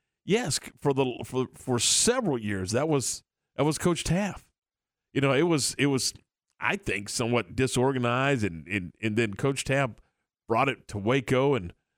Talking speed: 170 wpm